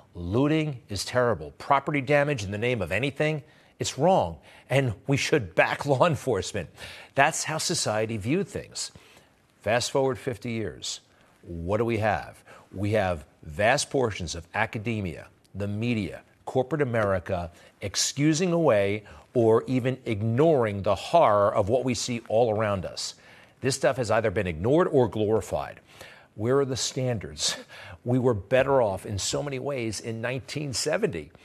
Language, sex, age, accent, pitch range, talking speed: English, male, 50-69, American, 100-135 Hz, 145 wpm